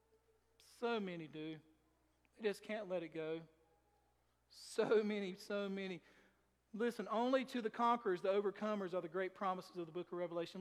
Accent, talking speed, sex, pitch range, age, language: American, 165 wpm, male, 175-235 Hz, 40-59, English